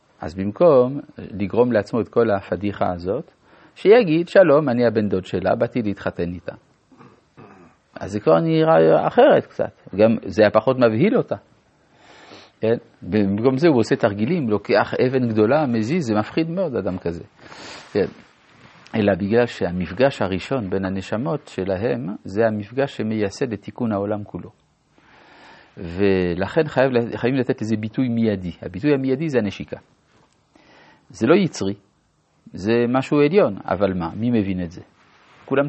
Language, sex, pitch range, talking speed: Hebrew, male, 95-135 Hz, 140 wpm